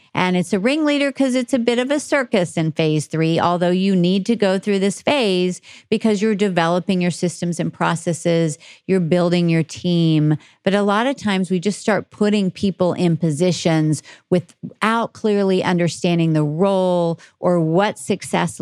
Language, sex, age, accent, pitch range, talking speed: English, female, 50-69, American, 160-195 Hz, 170 wpm